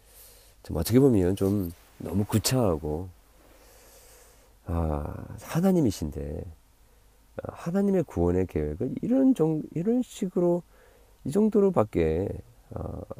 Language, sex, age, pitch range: Korean, male, 40-59, 85-130 Hz